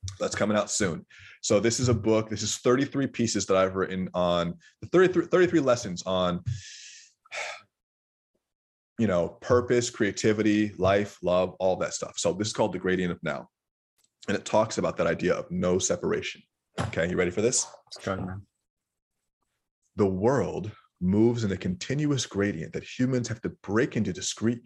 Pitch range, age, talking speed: 95-125 Hz, 20-39, 160 wpm